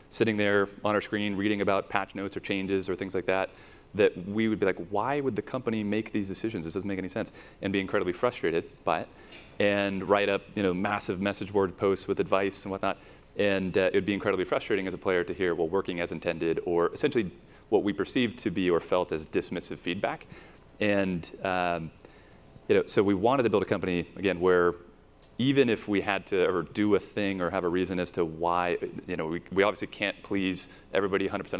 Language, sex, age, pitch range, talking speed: English, male, 30-49, 90-105 Hz, 220 wpm